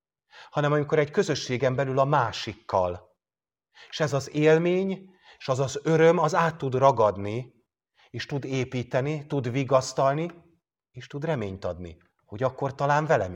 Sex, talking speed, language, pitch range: male, 145 wpm, English, 110-155 Hz